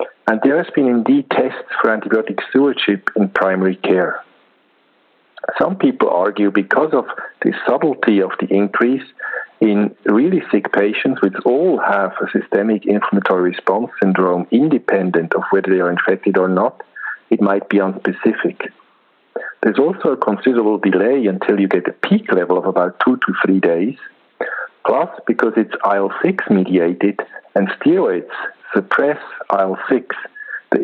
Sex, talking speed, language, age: male, 140 wpm, English, 50-69